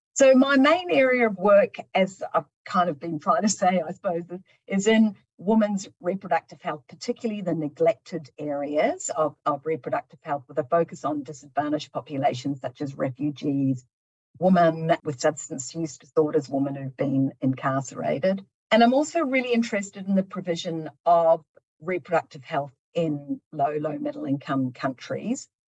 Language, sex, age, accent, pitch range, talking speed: English, female, 50-69, Australian, 150-195 Hz, 150 wpm